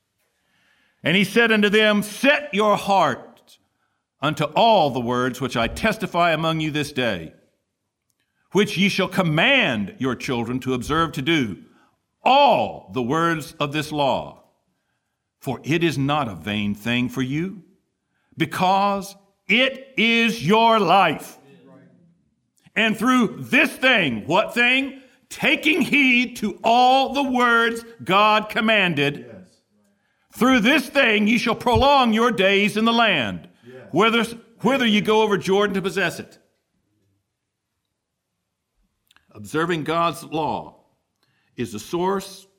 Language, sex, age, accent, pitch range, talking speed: English, male, 60-79, American, 130-220 Hz, 125 wpm